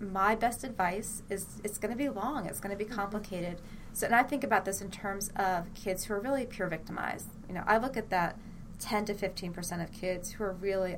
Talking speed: 240 wpm